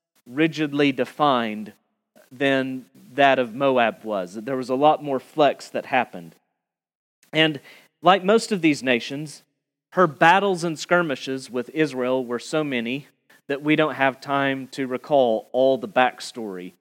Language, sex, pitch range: English, male, 130-165 Hz